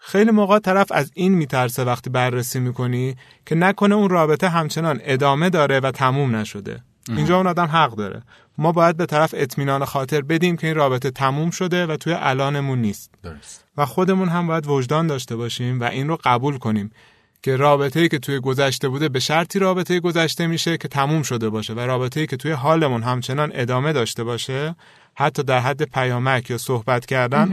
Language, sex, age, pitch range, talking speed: Persian, male, 30-49, 130-165 Hz, 180 wpm